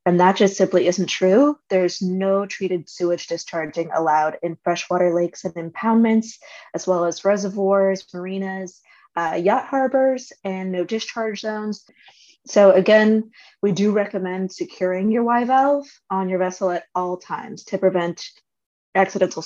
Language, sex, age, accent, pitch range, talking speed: English, female, 20-39, American, 175-210 Hz, 140 wpm